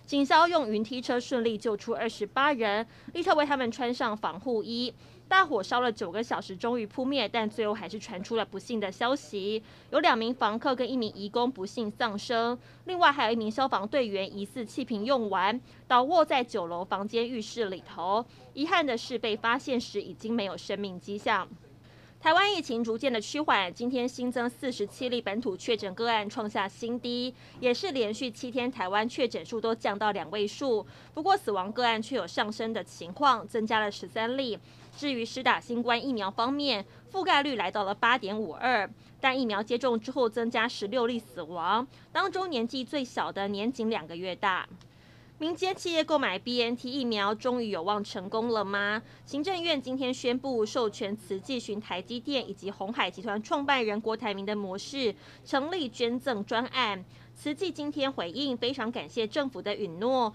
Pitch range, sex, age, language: 210-260 Hz, female, 20-39, Chinese